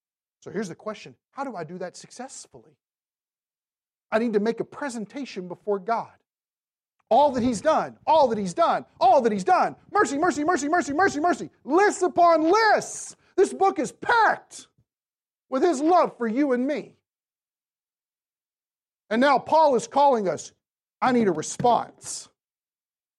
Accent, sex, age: American, male, 40-59